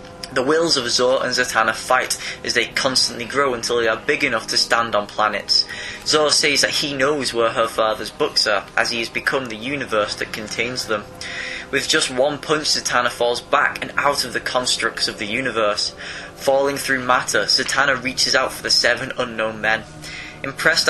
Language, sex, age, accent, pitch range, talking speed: English, male, 20-39, British, 110-140 Hz, 190 wpm